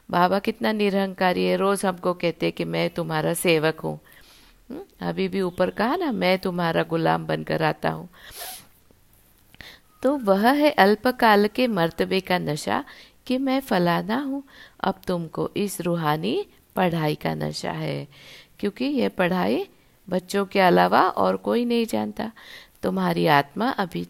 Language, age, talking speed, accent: Hindi, 50-69, 140 wpm, native